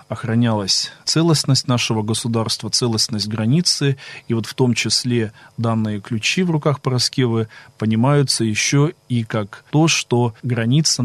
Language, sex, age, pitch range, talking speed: Russian, male, 20-39, 105-125 Hz, 125 wpm